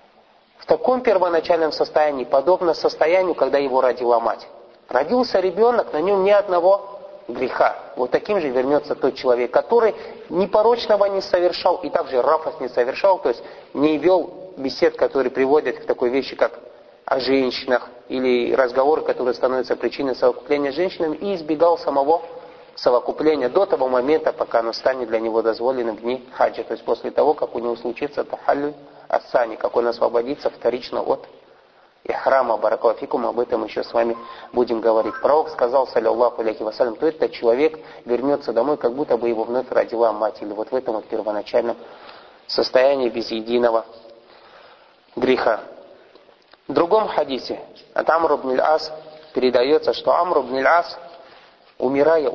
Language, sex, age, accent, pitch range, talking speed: Russian, male, 30-49, native, 125-180 Hz, 150 wpm